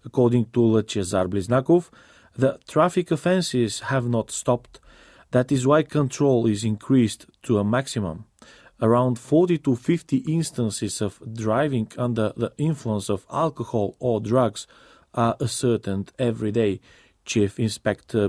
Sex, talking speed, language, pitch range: male, 130 wpm, English, 105-135 Hz